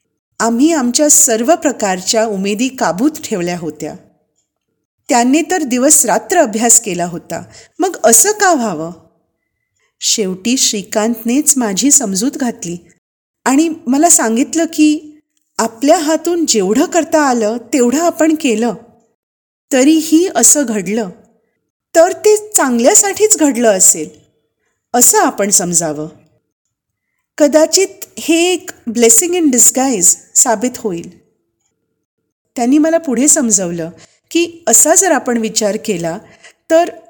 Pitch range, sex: 205-300 Hz, female